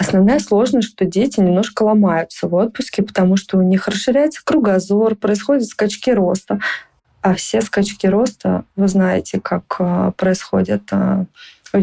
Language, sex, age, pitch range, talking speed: Russian, female, 20-39, 185-225 Hz, 130 wpm